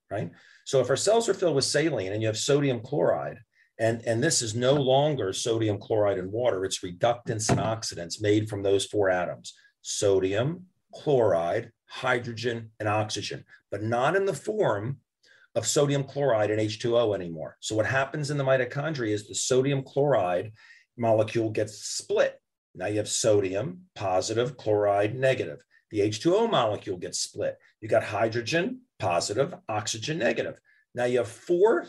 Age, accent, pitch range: 40-59, American, 105-145 Hz